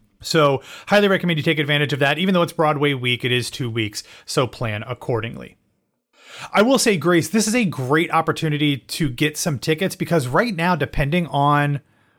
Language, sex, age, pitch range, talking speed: English, male, 30-49, 125-170 Hz, 185 wpm